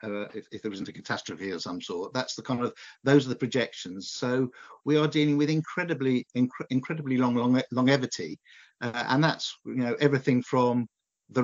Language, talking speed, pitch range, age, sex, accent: English, 195 wpm, 115-135 Hz, 50-69, male, British